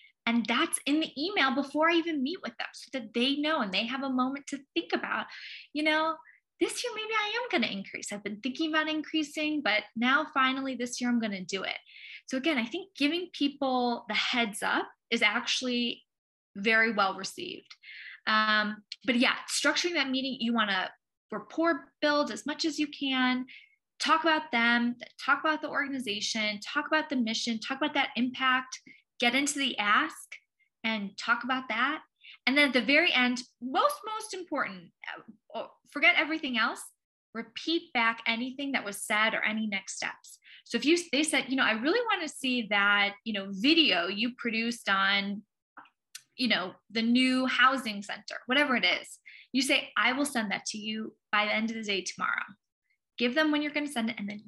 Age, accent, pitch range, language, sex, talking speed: 20-39, American, 220-300 Hz, English, female, 190 wpm